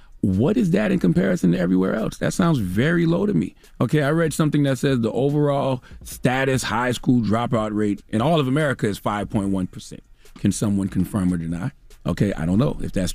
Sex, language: male, English